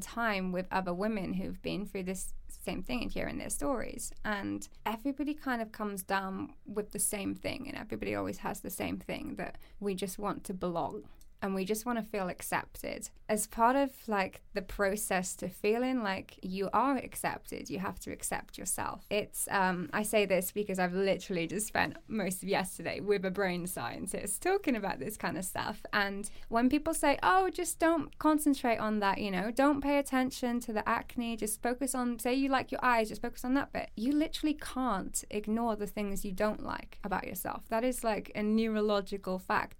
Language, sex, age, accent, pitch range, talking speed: English, female, 10-29, British, 195-250 Hz, 200 wpm